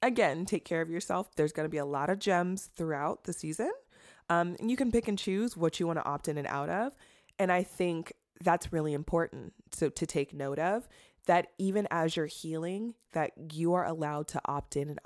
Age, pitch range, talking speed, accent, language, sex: 20-39, 145-190 Hz, 220 wpm, American, English, female